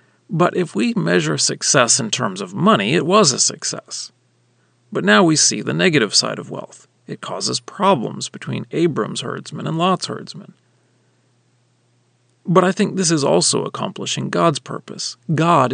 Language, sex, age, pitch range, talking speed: English, male, 40-59, 120-185 Hz, 155 wpm